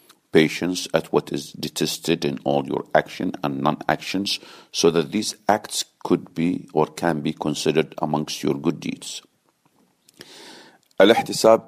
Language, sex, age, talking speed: English, male, 50-69, 135 wpm